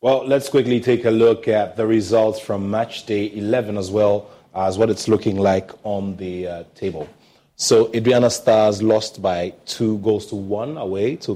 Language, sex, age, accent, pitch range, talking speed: English, male, 30-49, Nigerian, 95-110 Hz, 185 wpm